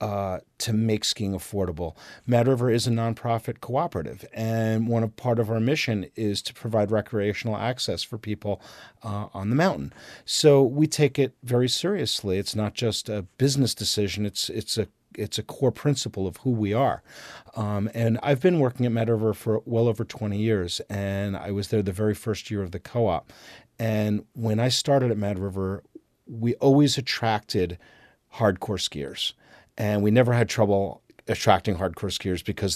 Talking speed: 170 wpm